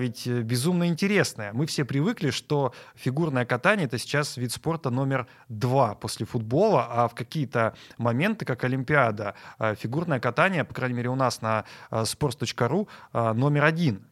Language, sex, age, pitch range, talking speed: Russian, male, 20-39, 120-155 Hz, 145 wpm